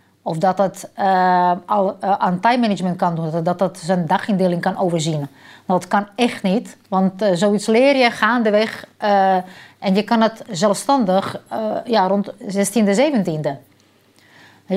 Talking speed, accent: 140 wpm, Dutch